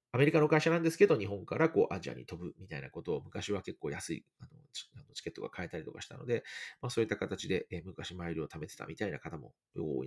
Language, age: Japanese, 40-59